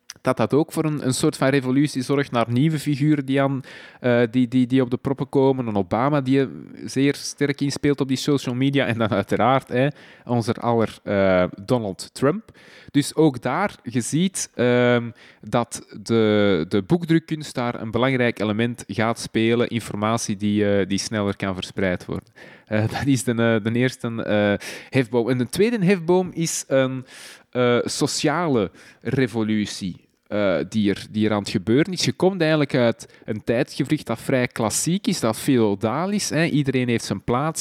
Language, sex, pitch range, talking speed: Dutch, male, 105-135 Hz, 175 wpm